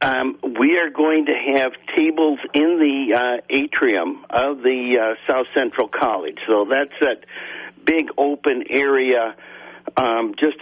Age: 60-79